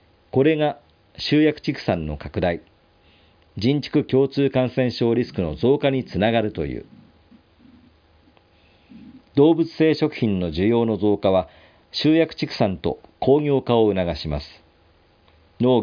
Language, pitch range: Japanese, 85-130 Hz